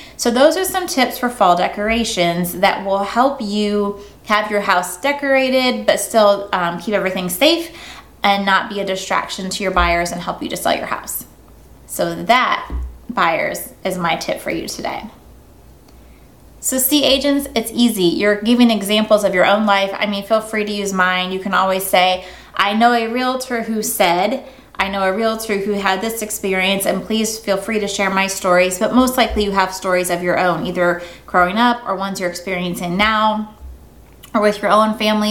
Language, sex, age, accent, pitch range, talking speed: English, female, 20-39, American, 190-230 Hz, 190 wpm